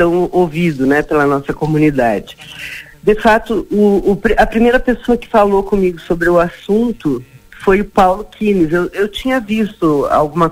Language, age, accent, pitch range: Portuguese, 50-69, Brazilian, 155-195 Hz